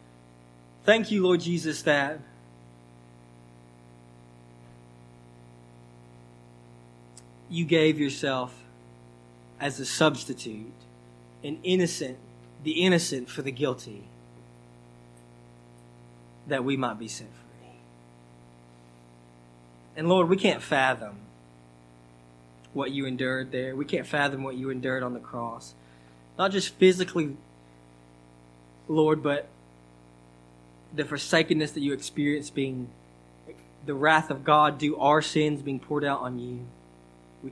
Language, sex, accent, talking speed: English, male, American, 105 wpm